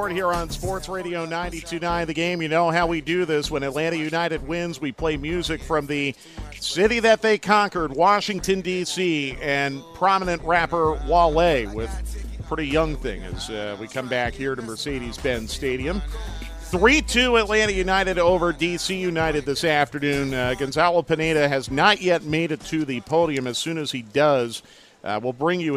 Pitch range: 135-170 Hz